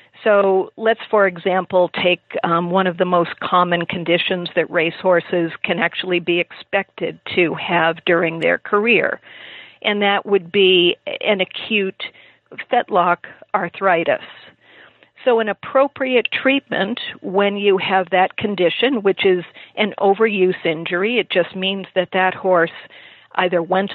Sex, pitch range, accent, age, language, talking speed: female, 175-205 Hz, American, 50-69, English, 135 wpm